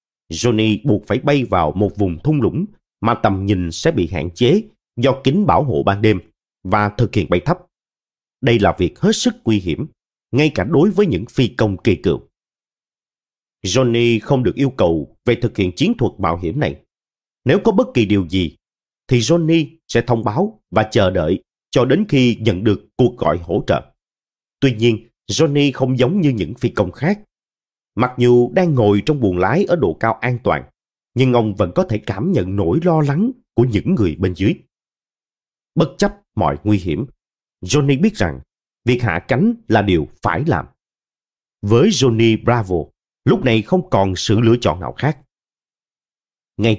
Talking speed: 185 wpm